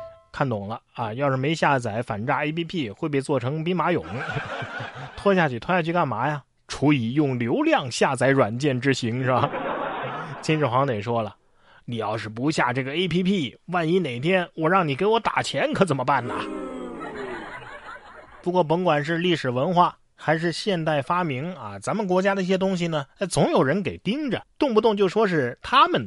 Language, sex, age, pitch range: Chinese, male, 30-49, 135-195 Hz